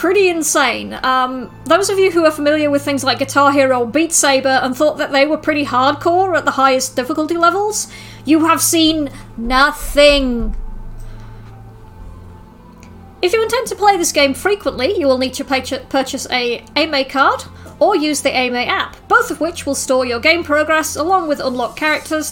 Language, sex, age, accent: English, female, 30-49, British